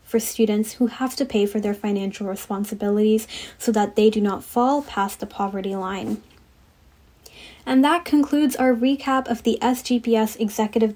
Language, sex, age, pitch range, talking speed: English, female, 10-29, 210-245 Hz, 160 wpm